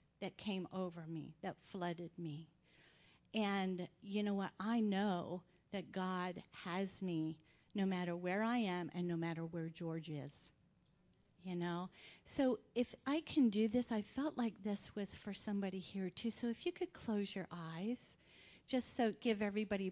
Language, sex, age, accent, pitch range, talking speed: English, female, 40-59, American, 190-280 Hz, 170 wpm